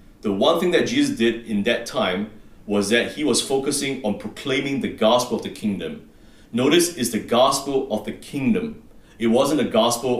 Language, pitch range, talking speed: English, 105-135 Hz, 190 wpm